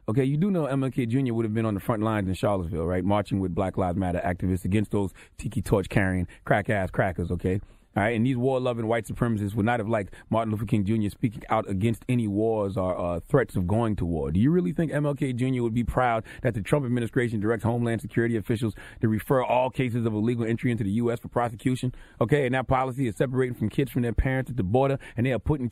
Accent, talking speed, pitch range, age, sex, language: American, 240 wpm, 105-135 Hz, 30-49, male, English